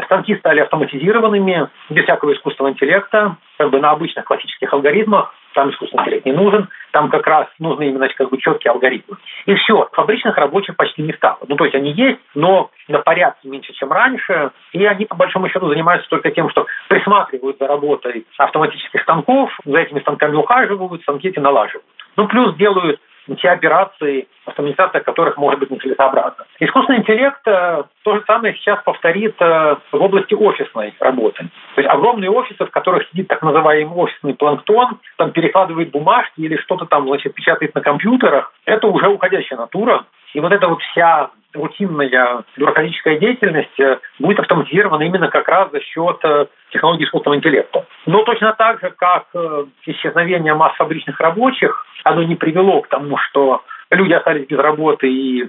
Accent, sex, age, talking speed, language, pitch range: native, male, 40-59, 160 wpm, Russian, 145-205 Hz